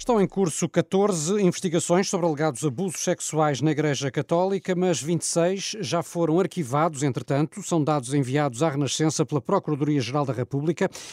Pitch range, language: 140-175 Hz, Portuguese